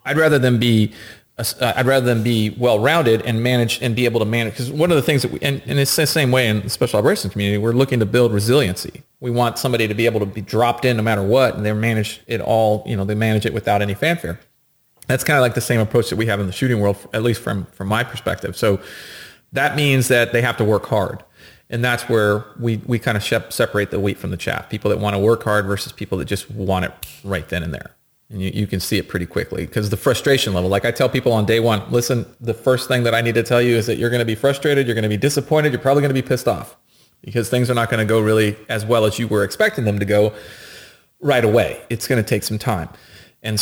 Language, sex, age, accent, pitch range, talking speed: English, male, 30-49, American, 100-120 Hz, 275 wpm